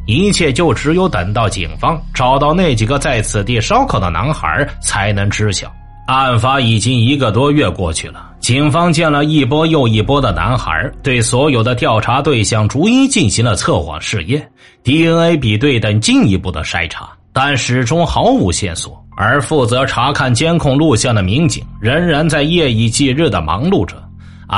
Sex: male